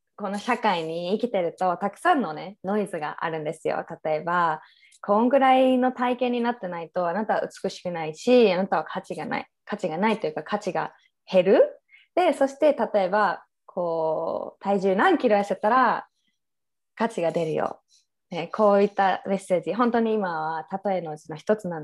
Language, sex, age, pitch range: Japanese, female, 20-39, 170-220 Hz